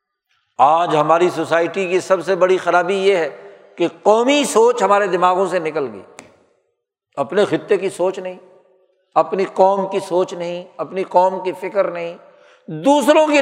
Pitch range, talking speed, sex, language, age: 175-235 Hz, 155 wpm, male, Urdu, 60-79